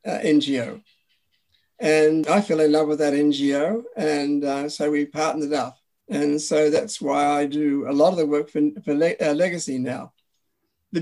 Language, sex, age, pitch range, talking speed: English, male, 50-69, 150-215 Hz, 180 wpm